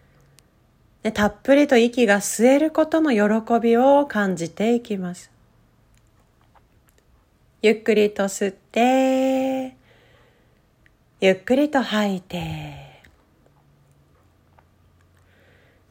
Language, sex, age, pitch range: Japanese, female, 40-59, 195-260 Hz